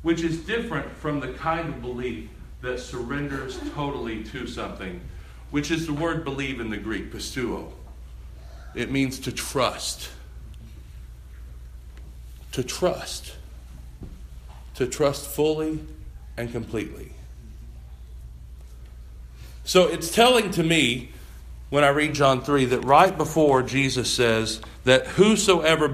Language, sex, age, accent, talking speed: English, male, 40-59, American, 115 wpm